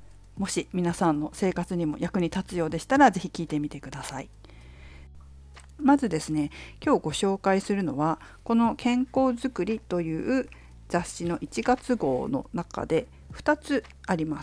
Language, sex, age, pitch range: Japanese, female, 50-69, 155-235 Hz